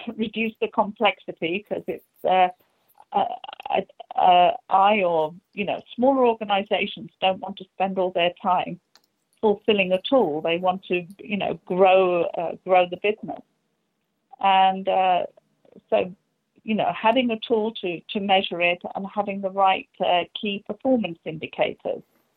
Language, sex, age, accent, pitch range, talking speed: English, female, 40-59, British, 180-225 Hz, 150 wpm